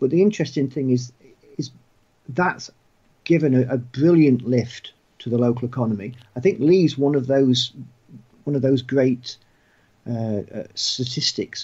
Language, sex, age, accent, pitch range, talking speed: English, male, 50-69, British, 115-140 Hz, 150 wpm